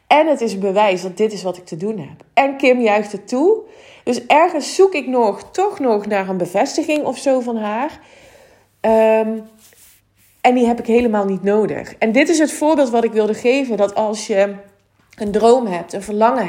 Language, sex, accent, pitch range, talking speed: Dutch, female, Dutch, 200-245 Hz, 205 wpm